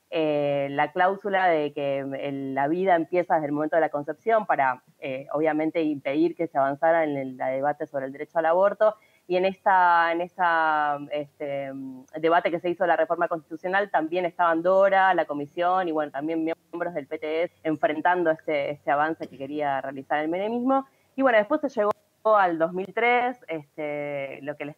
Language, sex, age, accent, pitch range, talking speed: Spanish, female, 20-39, Argentinian, 145-180 Hz, 185 wpm